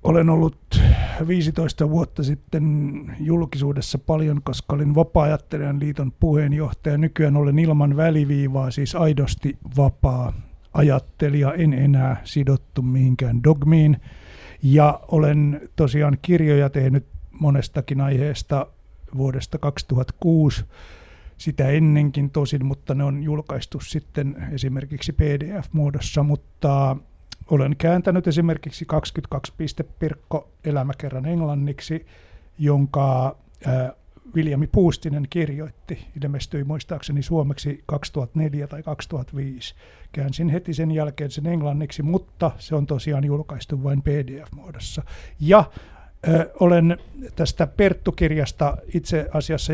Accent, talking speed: native, 100 wpm